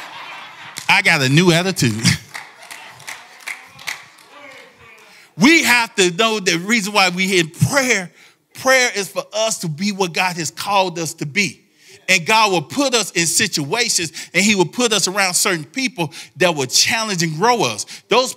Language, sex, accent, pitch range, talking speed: English, male, American, 180-230 Hz, 165 wpm